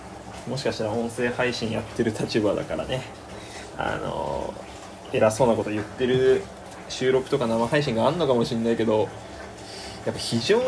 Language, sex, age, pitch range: Japanese, male, 20-39, 110-140 Hz